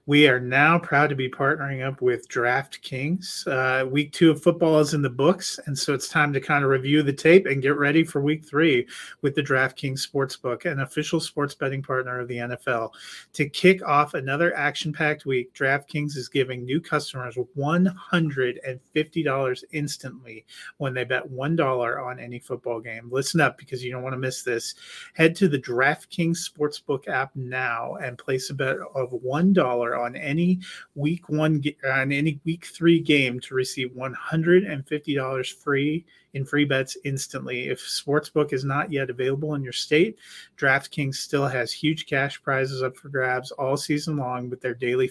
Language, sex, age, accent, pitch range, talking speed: English, male, 30-49, American, 130-150 Hz, 175 wpm